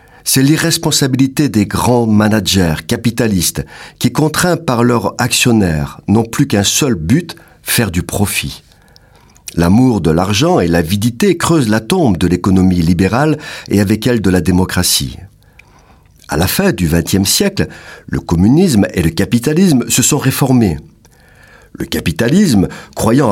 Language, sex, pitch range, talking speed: French, male, 95-135 Hz, 135 wpm